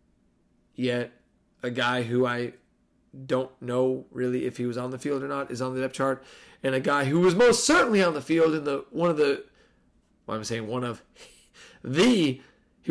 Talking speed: 200 wpm